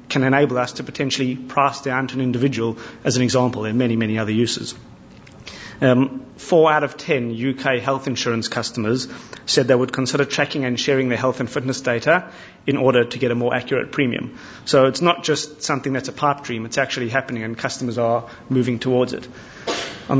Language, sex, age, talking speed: English, male, 30-49, 195 wpm